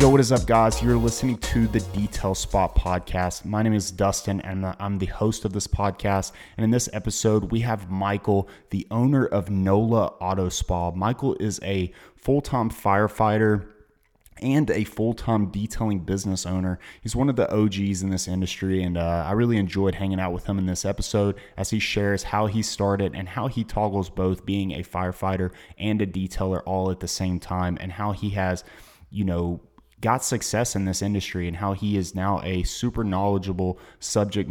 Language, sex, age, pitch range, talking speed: English, male, 20-39, 95-105 Hz, 190 wpm